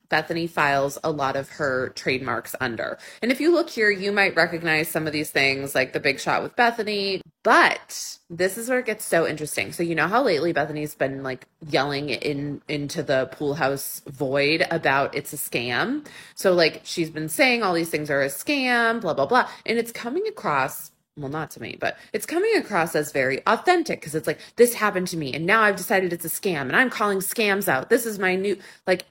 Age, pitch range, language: 20-39, 150-215 Hz, English